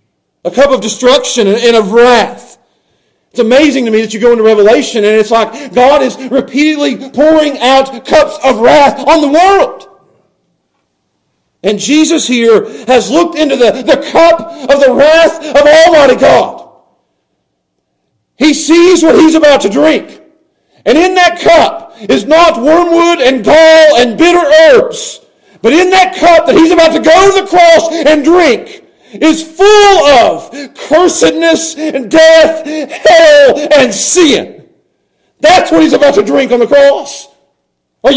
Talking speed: 150 wpm